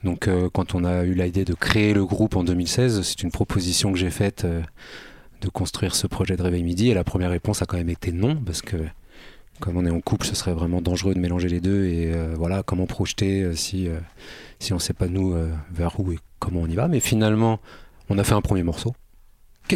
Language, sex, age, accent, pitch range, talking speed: French, male, 30-49, French, 85-100 Hz, 250 wpm